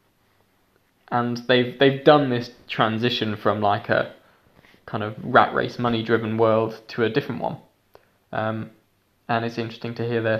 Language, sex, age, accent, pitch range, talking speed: English, male, 20-39, British, 115-140 Hz, 155 wpm